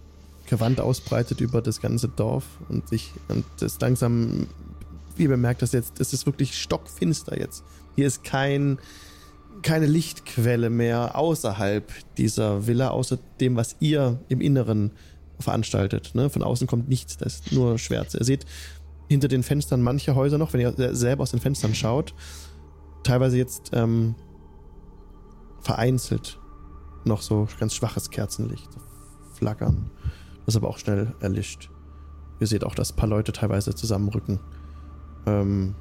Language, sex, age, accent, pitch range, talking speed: German, male, 20-39, German, 75-125 Hz, 145 wpm